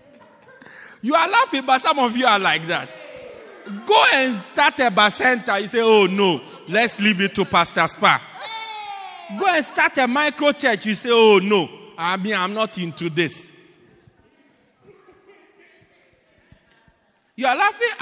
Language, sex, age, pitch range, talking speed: English, male, 50-69, 175-270 Hz, 145 wpm